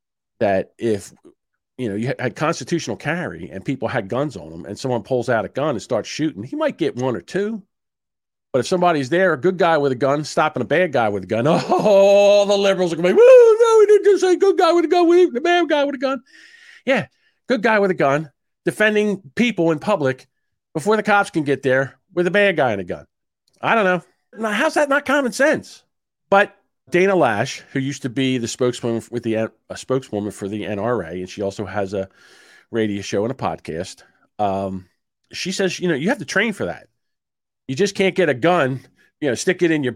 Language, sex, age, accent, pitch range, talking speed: English, male, 50-69, American, 120-200 Hz, 225 wpm